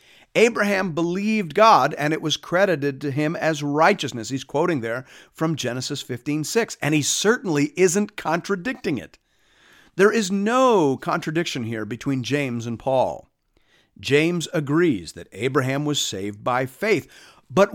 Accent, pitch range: American, 130-200 Hz